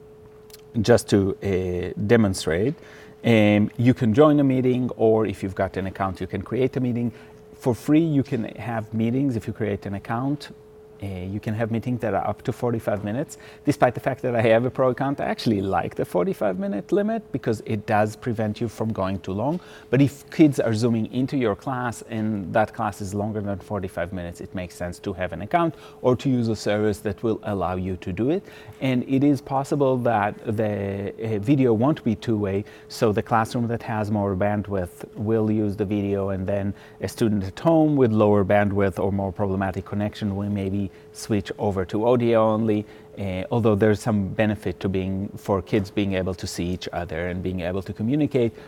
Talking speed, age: 205 wpm, 30-49